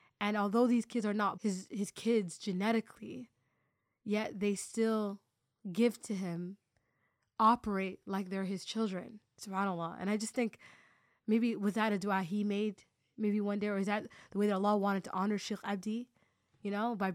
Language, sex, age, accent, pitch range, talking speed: English, female, 20-39, American, 195-225 Hz, 180 wpm